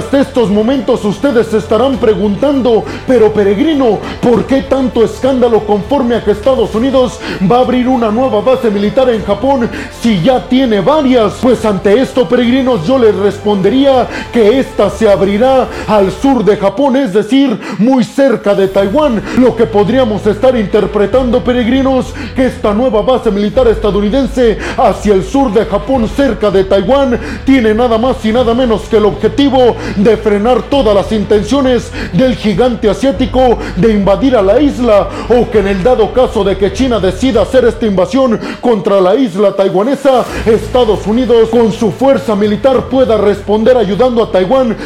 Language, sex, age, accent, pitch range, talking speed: Spanish, male, 30-49, Mexican, 210-255 Hz, 165 wpm